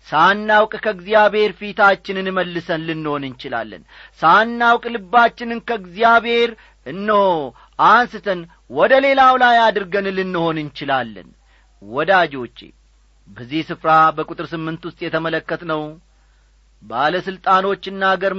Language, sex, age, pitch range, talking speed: Amharic, male, 40-59, 150-210 Hz, 90 wpm